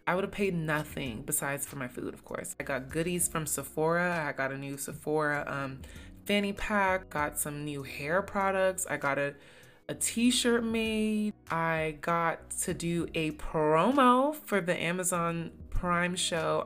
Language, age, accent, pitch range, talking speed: English, 20-39, American, 150-200 Hz, 165 wpm